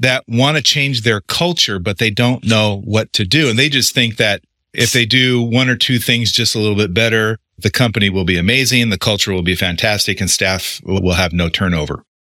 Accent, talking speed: American, 225 wpm